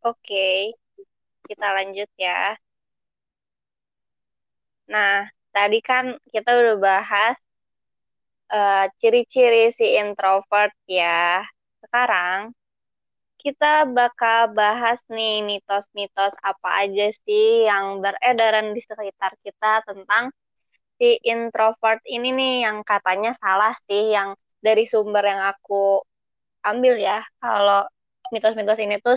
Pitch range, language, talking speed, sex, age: 200-240 Hz, Indonesian, 105 wpm, female, 20-39